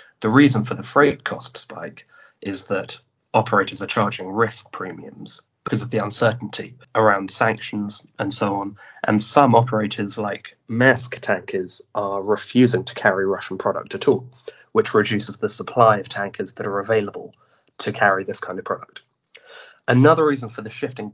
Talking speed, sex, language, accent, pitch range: 160 wpm, male, English, British, 105-125 Hz